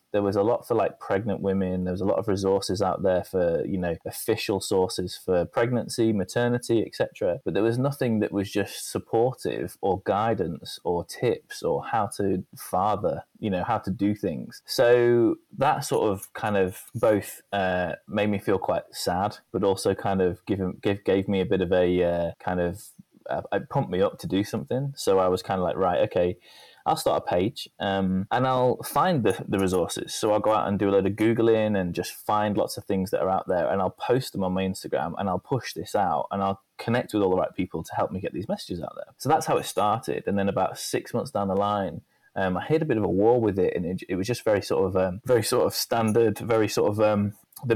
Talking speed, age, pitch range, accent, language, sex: 240 wpm, 20-39, 95-110 Hz, British, English, male